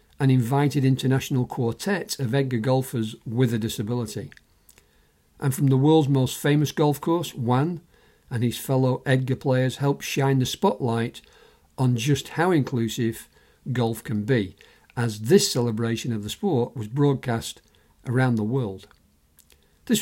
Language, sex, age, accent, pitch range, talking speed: English, male, 50-69, British, 115-135 Hz, 140 wpm